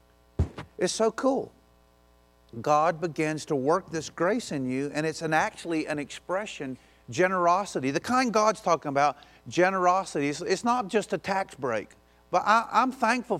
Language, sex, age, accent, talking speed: English, male, 50-69, American, 150 wpm